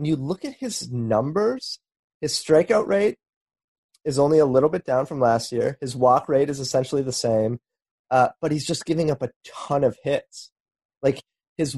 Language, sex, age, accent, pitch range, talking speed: English, male, 30-49, American, 120-155 Hz, 190 wpm